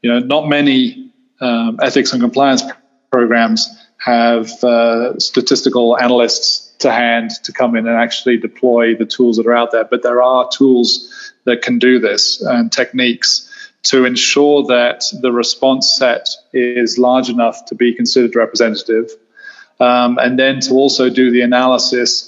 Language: English